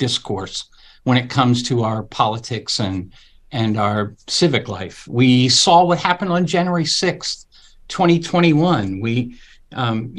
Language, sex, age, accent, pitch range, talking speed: English, male, 50-69, American, 120-145 Hz, 130 wpm